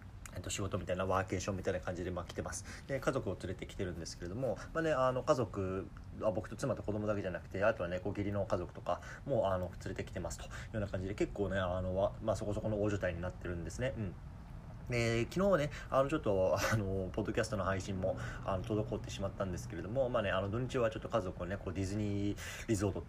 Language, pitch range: Japanese, 95-110 Hz